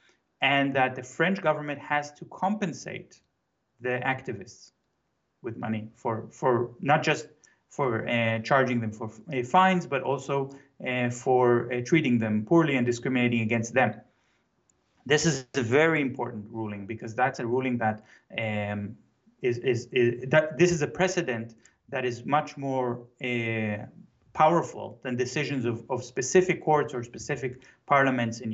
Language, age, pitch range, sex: English, 30-49, 120-155 Hz, male